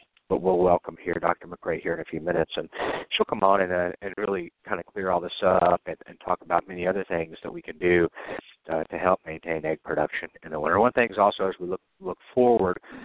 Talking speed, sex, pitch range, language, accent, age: 255 wpm, male, 90-105 Hz, English, American, 50-69